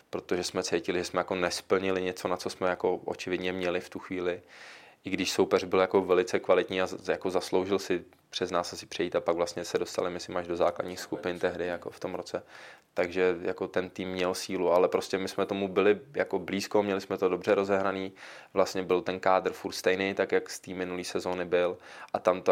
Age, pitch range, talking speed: 20-39, 90-95 Hz, 220 wpm